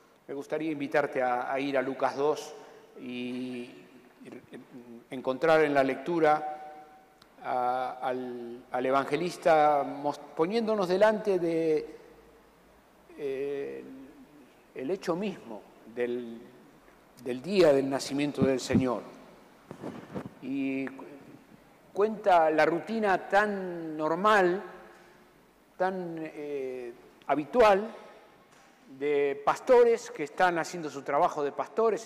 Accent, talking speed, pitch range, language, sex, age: Argentinian, 95 wpm, 135-185 Hz, Spanish, male, 50-69